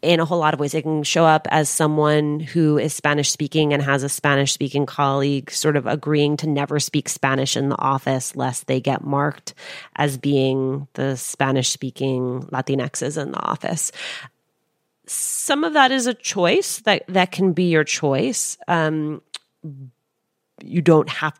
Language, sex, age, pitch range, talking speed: English, female, 30-49, 140-160 Hz, 170 wpm